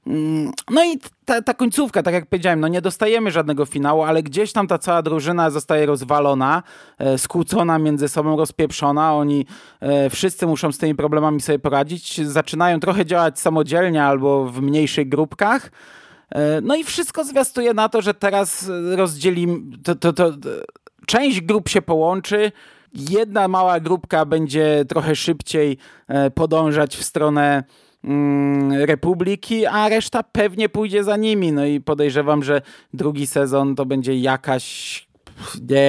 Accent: native